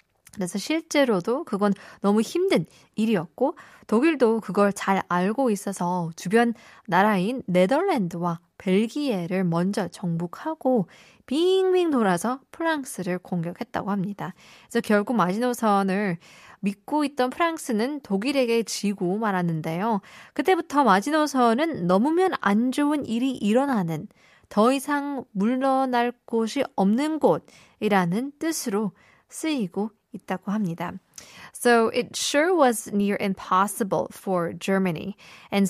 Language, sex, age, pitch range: Korean, female, 20-39, 185-255 Hz